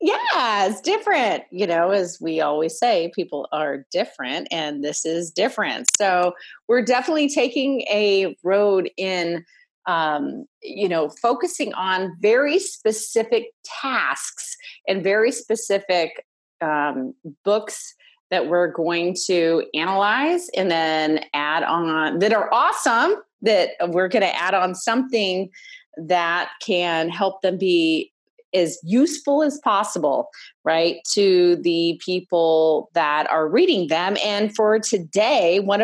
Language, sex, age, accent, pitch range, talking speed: English, female, 30-49, American, 170-270 Hz, 125 wpm